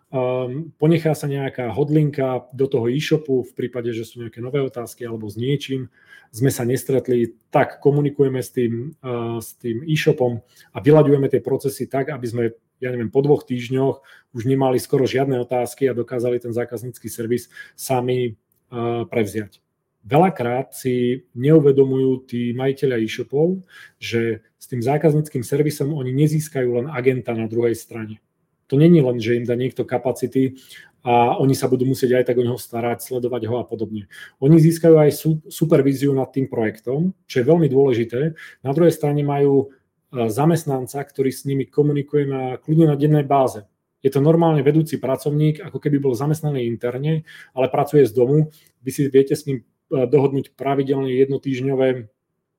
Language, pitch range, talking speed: Czech, 120-145 Hz, 160 wpm